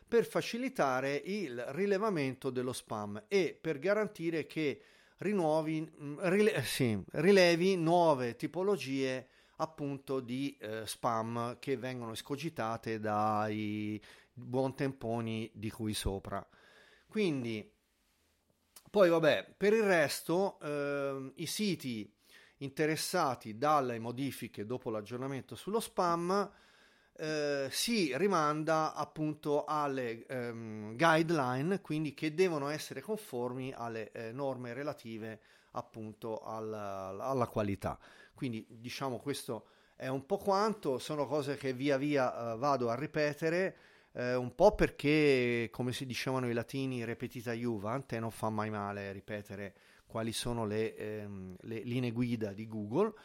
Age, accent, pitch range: 30-49, native, 115-155 Hz